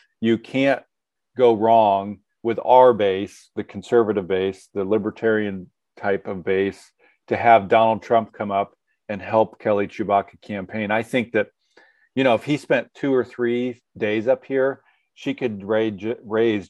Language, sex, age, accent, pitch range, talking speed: English, male, 40-59, American, 100-115 Hz, 155 wpm